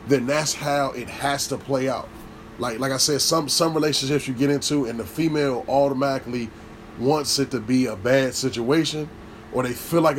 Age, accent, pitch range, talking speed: 20-39, American, 115-145 Hz, 195 wpm